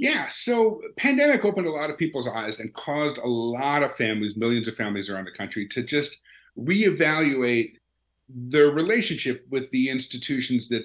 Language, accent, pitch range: English, American, 120-150 Hz